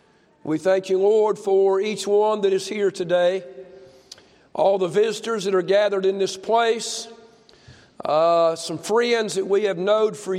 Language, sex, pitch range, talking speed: English, male, 180-215 Hz, 160 wpm